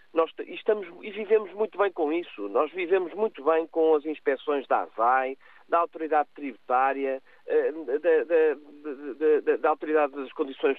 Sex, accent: male, Portuguese